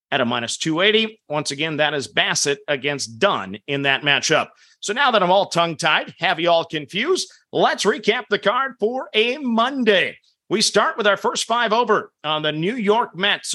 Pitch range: 155-220 Hz